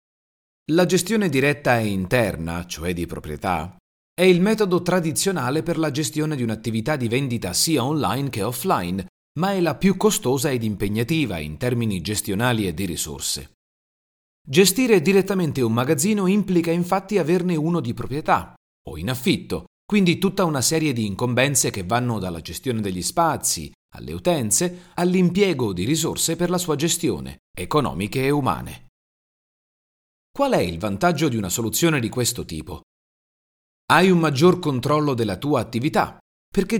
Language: Italian